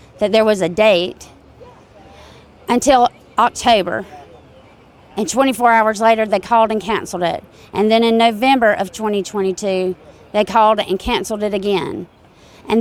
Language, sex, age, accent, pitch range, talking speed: English, female, 30-49, American, 185-230 Hz, 135 wpm